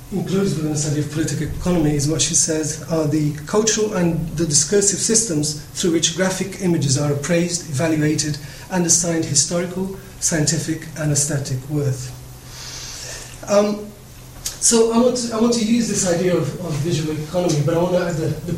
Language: English